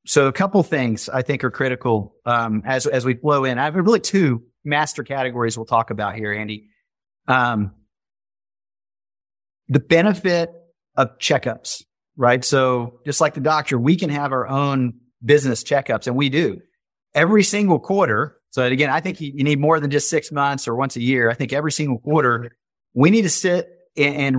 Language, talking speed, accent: English, 180 wpm, American